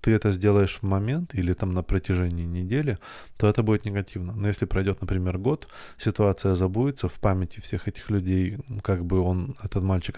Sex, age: male, 20-39